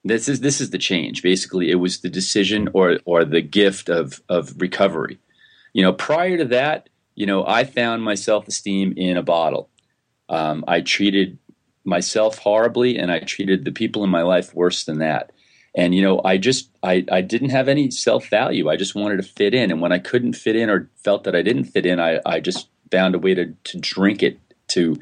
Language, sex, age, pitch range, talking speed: English, male, 40-59, 95-130 Hz, 215 wpm